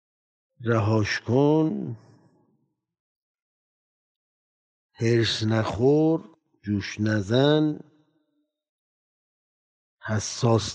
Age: 50-69